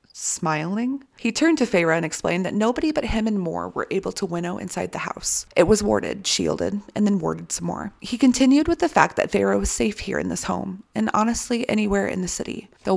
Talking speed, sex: 225 wpm, female